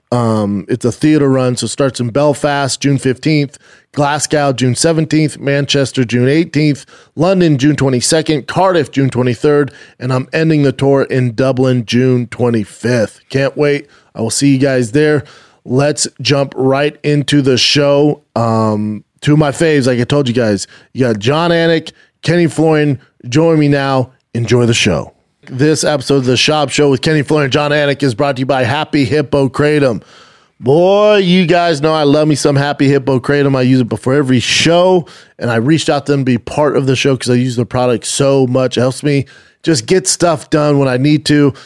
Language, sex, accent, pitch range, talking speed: English, male, American, 130-150 Hz, 195 wpm